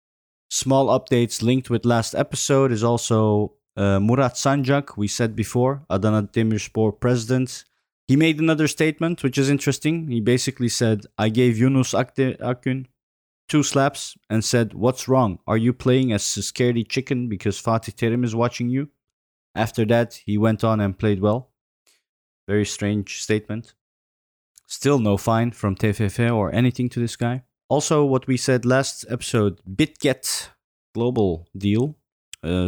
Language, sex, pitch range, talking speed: English, male, 100-130 Hz, 150 wpm